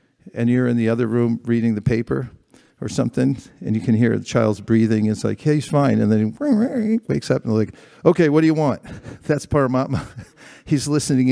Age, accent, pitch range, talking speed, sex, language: 50-69, American, 110-140 Hz, 205 wpm, male, English